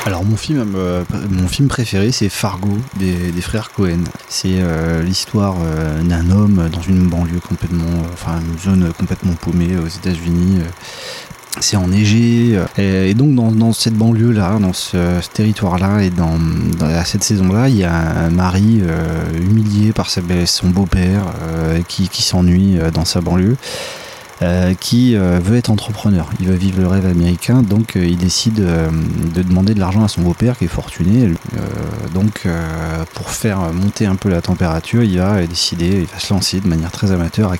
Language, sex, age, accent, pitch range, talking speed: French, male, 20-39, French, 85-105 Hz, 185 wpm